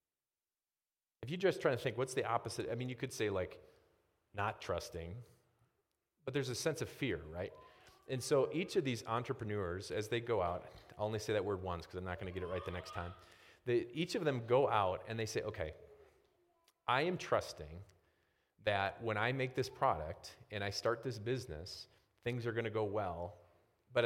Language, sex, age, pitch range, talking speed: English, male, 30-49, 90-120 Hz, 200 wpm